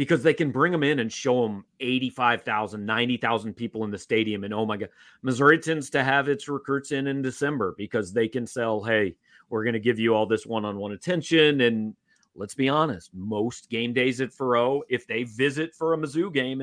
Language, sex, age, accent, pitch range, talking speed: English, male, 40-59, American, 110-150 Hz, 210 wpm